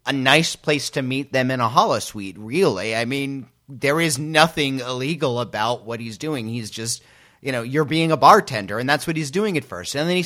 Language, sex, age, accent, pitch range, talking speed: English, male, 30-49, American, 115-160 Hz, 230 wpm